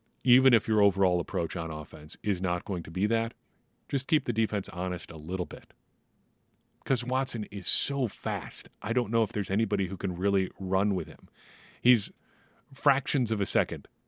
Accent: American